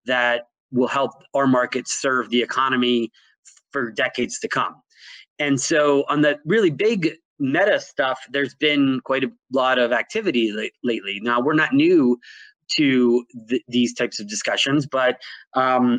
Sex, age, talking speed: male, 30-49, 150 wpm